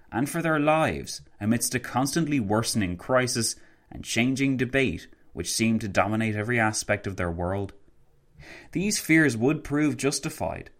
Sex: male